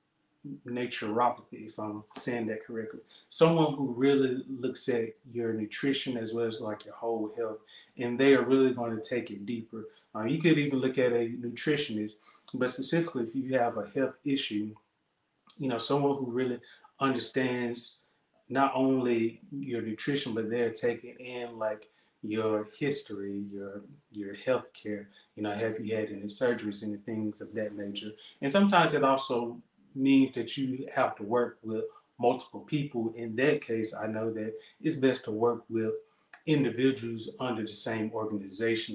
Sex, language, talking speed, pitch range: male, English, 165 wpm, 110-135 Hz